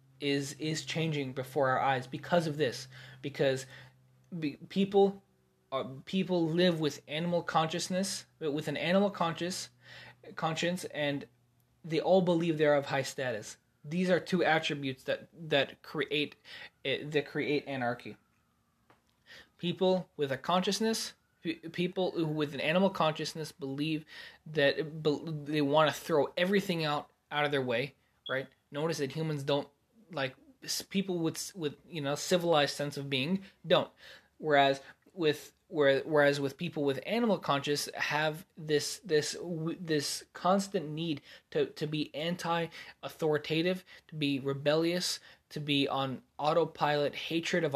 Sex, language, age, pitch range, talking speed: male, English, 20-39, 140-170 Hz, 140 wpm